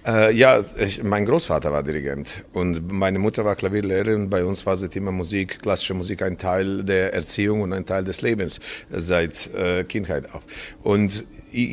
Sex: male